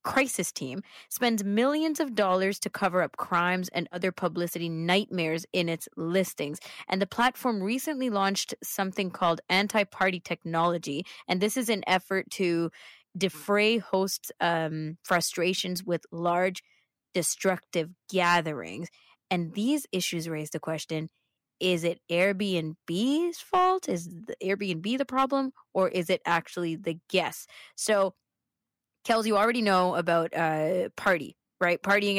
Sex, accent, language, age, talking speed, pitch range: female, American, English, 20-39, 130 wpm, 170-200 Hz